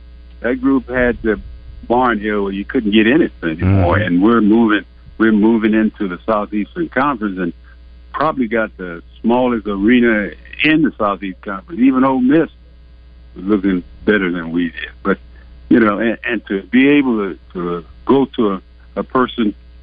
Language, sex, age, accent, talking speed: English, male, 60-79, American, 170 wpm